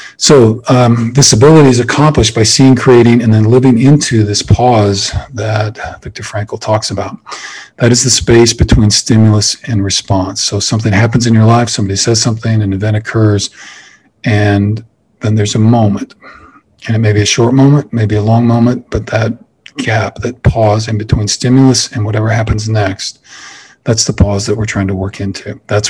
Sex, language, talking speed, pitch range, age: male, English, 180 wpm, 105-120 Hz, 40-59